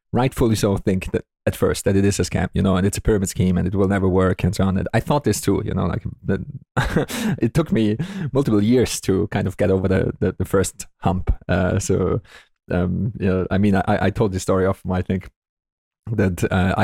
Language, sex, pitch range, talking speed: English, male, 90-105 Hz, 240 wpm